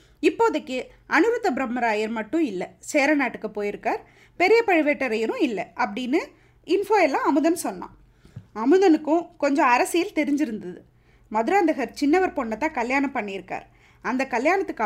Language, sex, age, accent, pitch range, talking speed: Tamil, female, 20-39, native, 220-330 Hz, 110 wpm